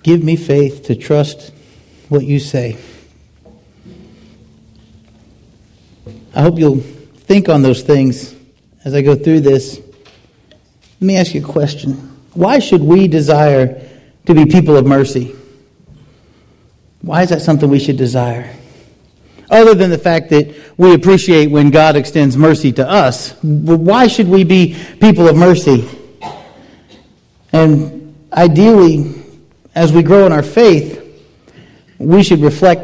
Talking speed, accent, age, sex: 135 wpm, American, 40-59, male